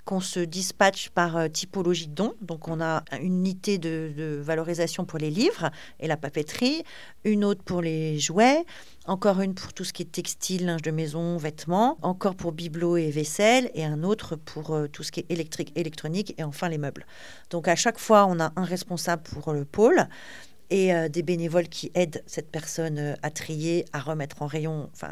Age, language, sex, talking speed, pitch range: 50-69, French, female, 195 wpm, 160-200 Hz